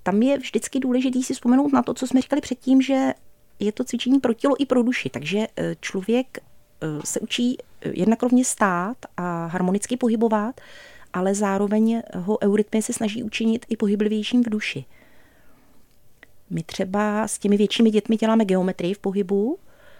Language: Czech